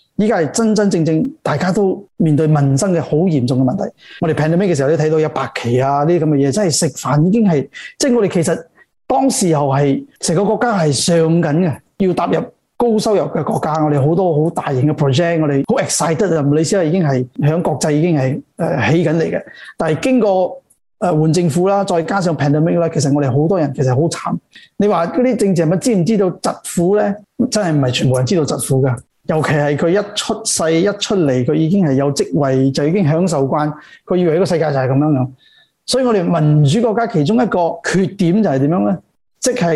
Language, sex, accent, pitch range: Chinese, male, native, 150-205 Hz